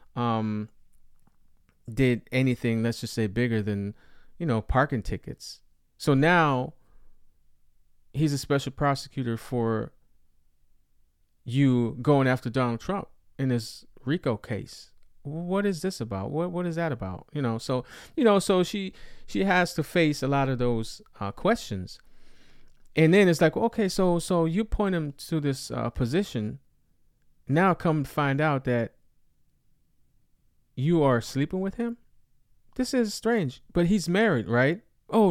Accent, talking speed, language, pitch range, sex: American, 145 wpm, English, 110-165 Hz, male